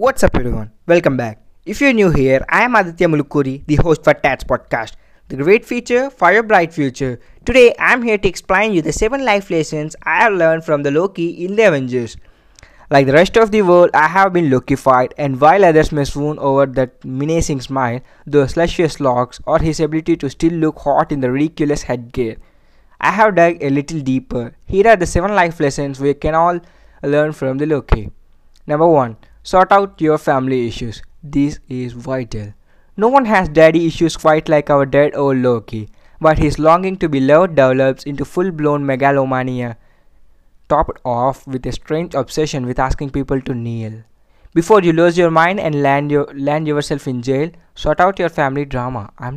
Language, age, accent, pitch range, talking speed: English, 20-39, Indian, 130-165 Hz, 190 wpm